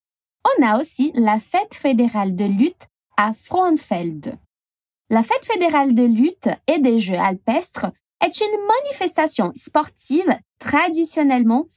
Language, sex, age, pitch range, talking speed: Portuguese, female, 20-39, 220-310 Hz, 120 wpm